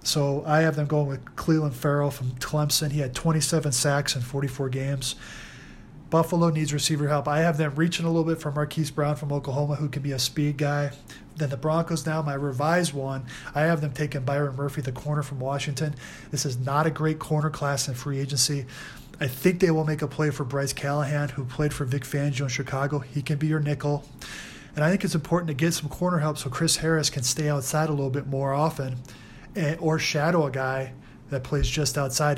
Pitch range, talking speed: 140-155 Hz, 215 wpm